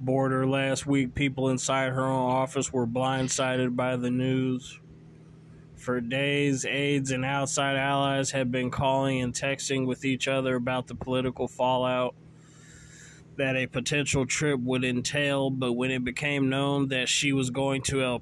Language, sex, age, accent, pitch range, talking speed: English, male, 20-39, American, 130-140 Hz, 160 wpm